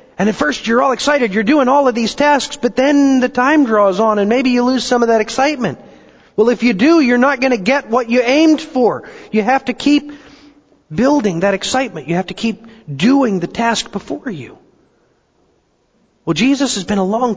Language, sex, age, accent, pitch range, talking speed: English, male, 40-59, American, 180-255 Hz, 210 wpm